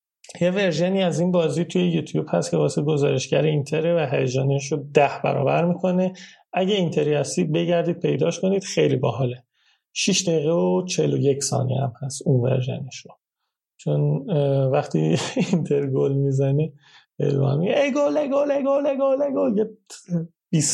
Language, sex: Persian, male